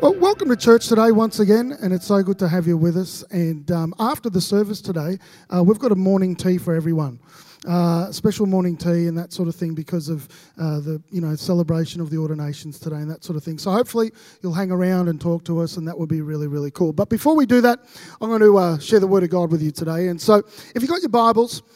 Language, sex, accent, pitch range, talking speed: English, male, Australian, 170-225 Hz, 265 wpm